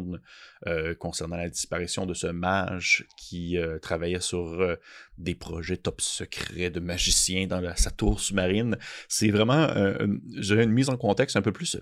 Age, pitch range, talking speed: 30-49, 90-105 Hz, 180 wpm